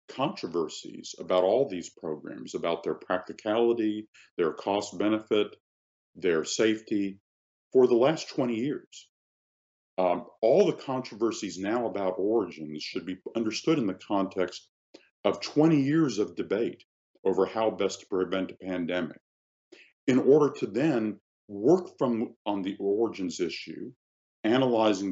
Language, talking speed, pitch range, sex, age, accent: English, 125 wpm, 85-115 Hz, male, 50-69, American